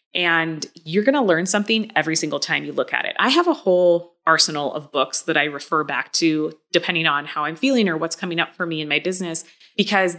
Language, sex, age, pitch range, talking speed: English, female, 20-39, 160-200 Hz, 235 wpm